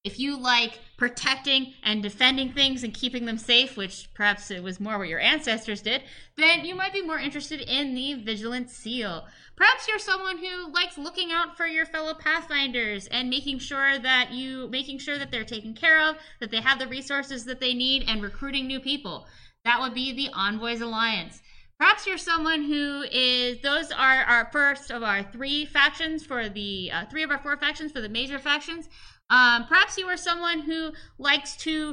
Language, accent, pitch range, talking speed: English, American, 240-295 Hz, 190 wpm